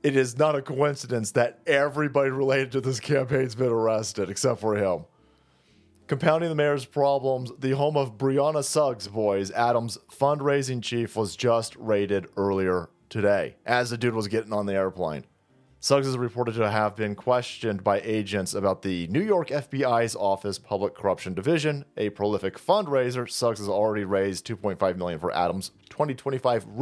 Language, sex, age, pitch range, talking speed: English, male, 30-49, 100-135 Hz, 165 wpm